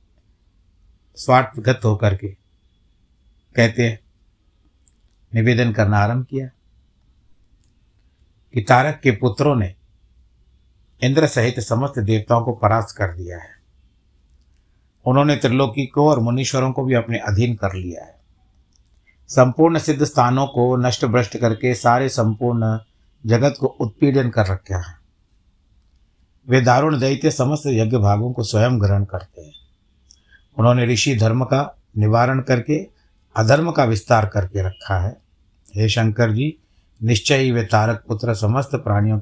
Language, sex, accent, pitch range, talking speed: Hindi, male, native, 95-130 Hz, 125 wpm